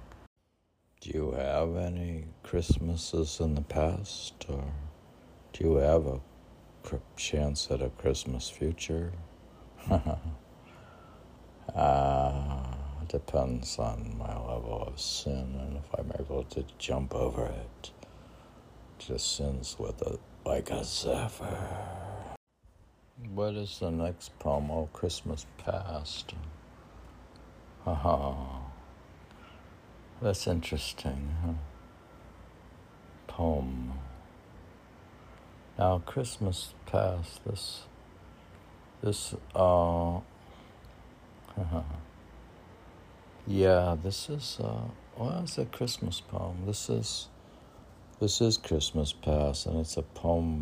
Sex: male